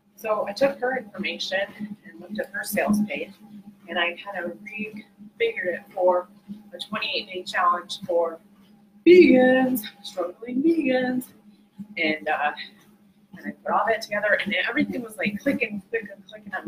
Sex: female